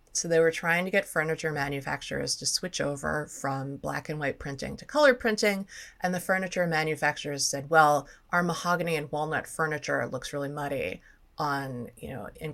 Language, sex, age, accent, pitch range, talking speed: English, female, 30-49, American, 150-185 Hz, 175 wpm